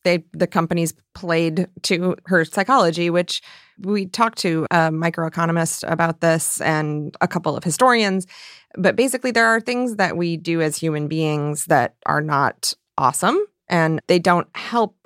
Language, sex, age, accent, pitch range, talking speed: English, female, 30-49, American, 160-195 Hz, 155 wpm